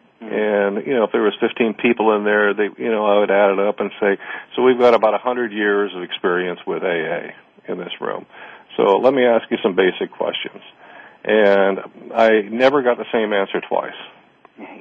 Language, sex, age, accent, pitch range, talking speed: English, male, 50-69, American, 95-115 Hz, 200 wpm